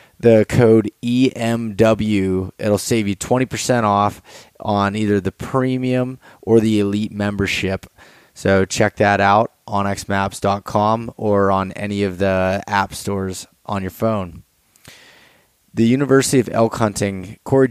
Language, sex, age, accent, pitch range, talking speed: English, male, 20-39, American, 95-115 Hz, 130 wpm